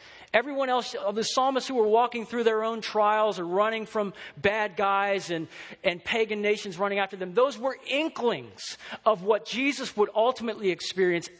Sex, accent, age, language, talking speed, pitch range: male, American, 40-59, English, 170 wpm, 170-220 Hz